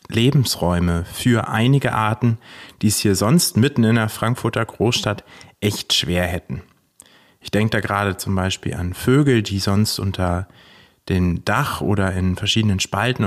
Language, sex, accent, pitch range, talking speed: German, male, German, 95-125 Hz, 150 wpm